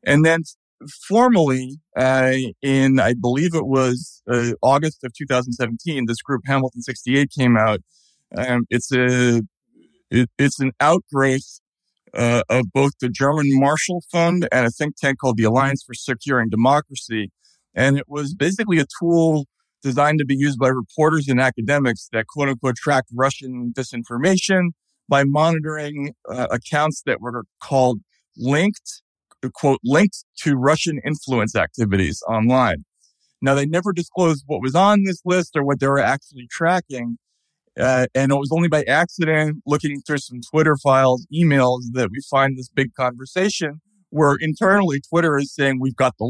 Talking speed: 155 wpm